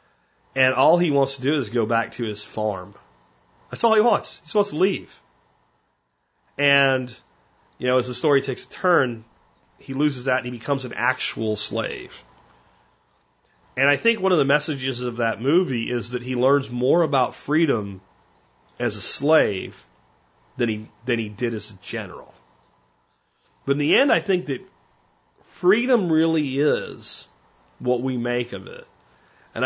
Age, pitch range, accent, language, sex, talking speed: 30-49, 115-150 Hz, American, English, male, 170 wpm